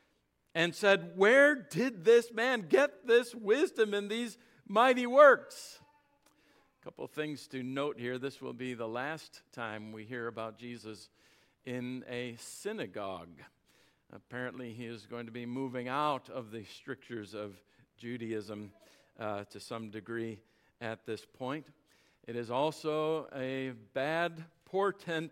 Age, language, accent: 50-69, English, American